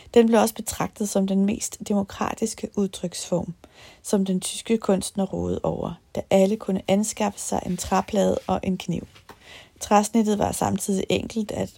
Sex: female